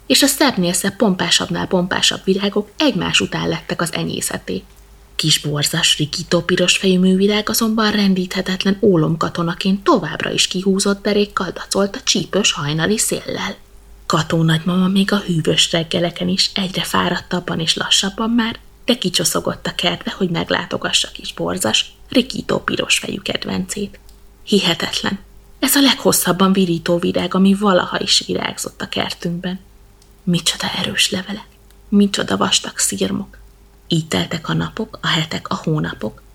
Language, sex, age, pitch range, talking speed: Hungarian, female, 20-39, 165-200 Hz, 125 wpm